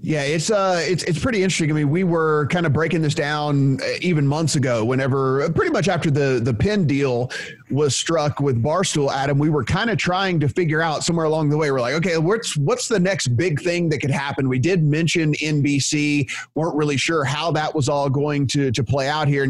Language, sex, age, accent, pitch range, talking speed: English, male, 30-49, American, 140-175 Hz, 225 wpm